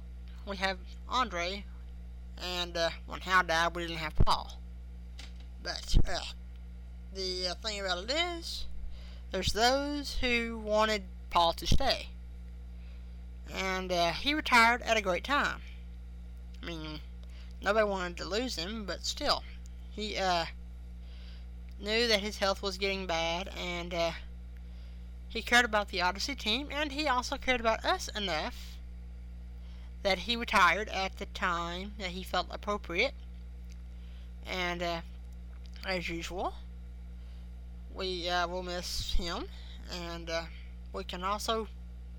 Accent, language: American, English